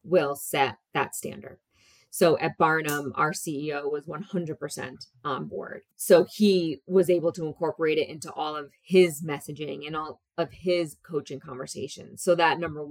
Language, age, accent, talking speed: English, 20-39, American, 160 wpm